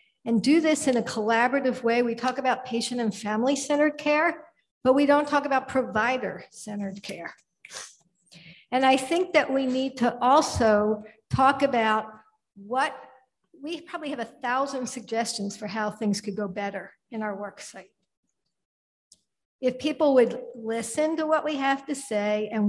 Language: English